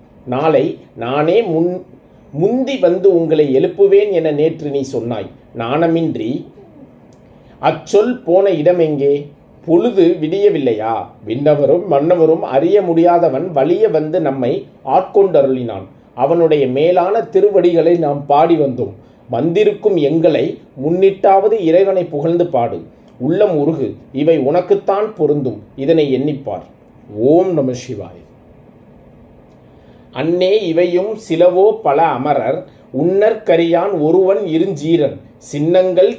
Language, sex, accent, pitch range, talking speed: Tamil, male, native, 150-195 Hz, 90 wpm